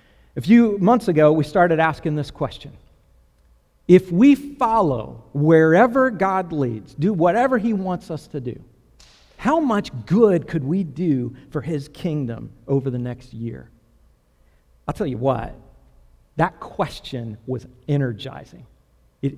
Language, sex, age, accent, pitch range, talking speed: English, male, 50-69, American, 115-155 Hz, 135 wpm